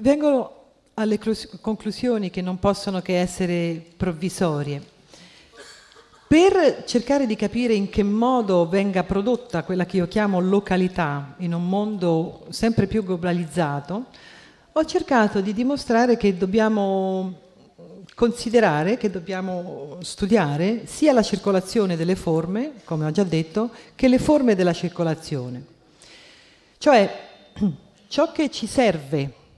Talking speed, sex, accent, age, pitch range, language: 120 wpm, female, native, 40-59, 175-230 Hz, Italian